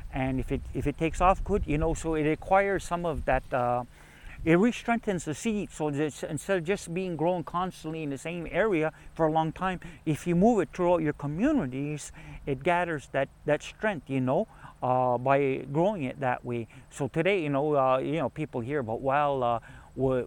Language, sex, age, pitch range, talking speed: English, male, 50-69, 130-165 Hz, 205 wpm